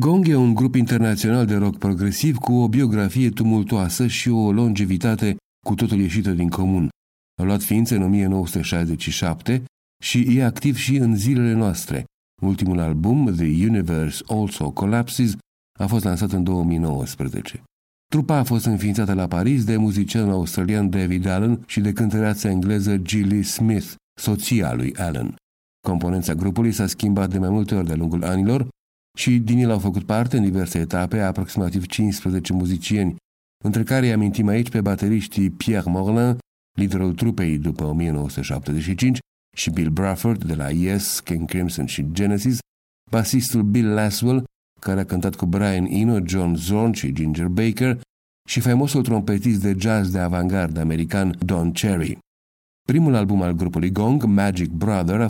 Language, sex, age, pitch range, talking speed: Romanian, male, 50-69, 90-115 Hz, 155 wpm